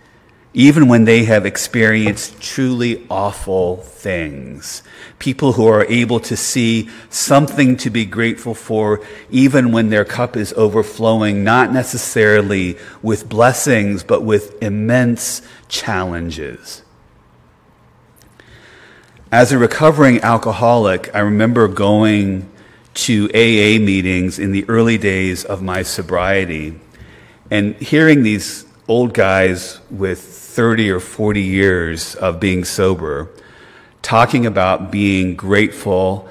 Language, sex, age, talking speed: English, male, 40-59, 110 wpm